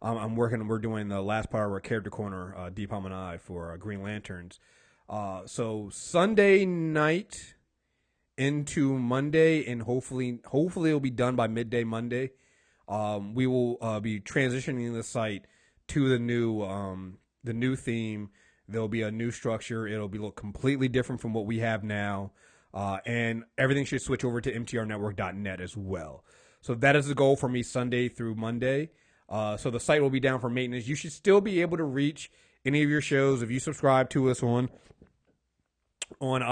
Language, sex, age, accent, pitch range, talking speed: English, male, 30-49, American, 105-135 Hz, 185 wpm